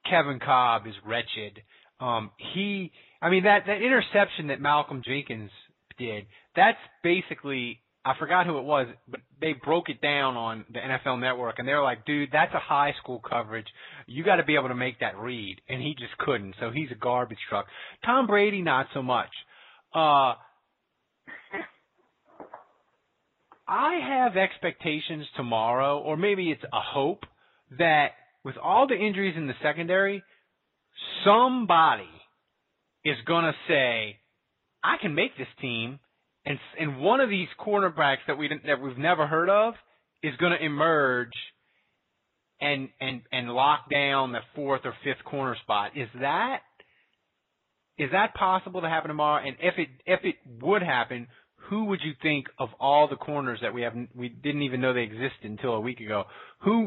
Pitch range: 125-165 Hz